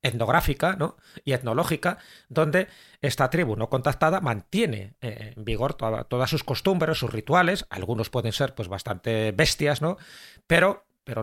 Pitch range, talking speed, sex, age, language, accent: 120-155 Hz, 140 wpm, male, 40-59, Spanish, Spanish